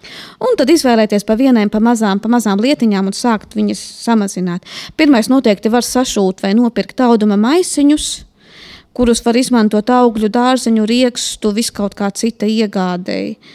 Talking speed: 135 wpm